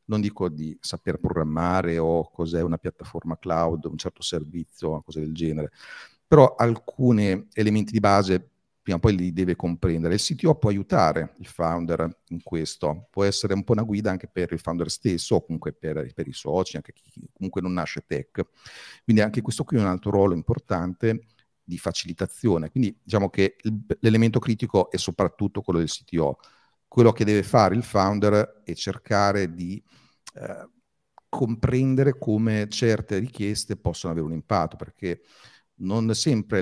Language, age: Italian, 40-59